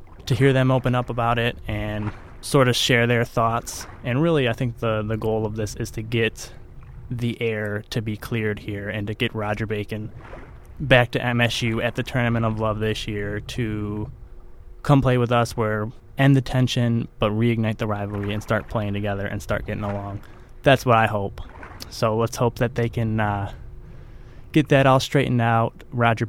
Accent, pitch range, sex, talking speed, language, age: American, 110-125 Hz, male, 190 wpm, English, 20-39